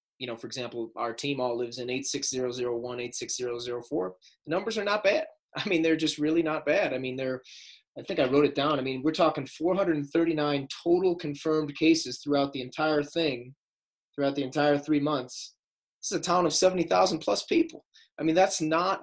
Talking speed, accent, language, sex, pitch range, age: 190 wpm, American, English, male, 130-160 Hz, 20-39